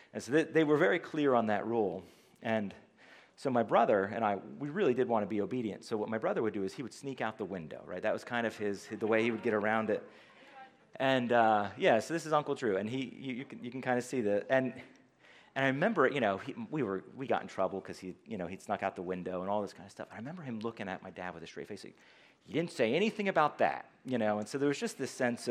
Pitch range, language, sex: 110-150 Hz, English, male